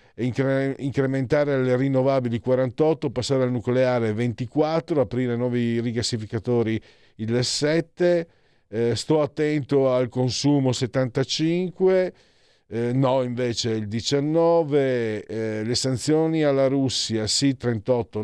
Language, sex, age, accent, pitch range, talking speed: Italian, male, 50-69, native, 115-140 Hz, 100 wpm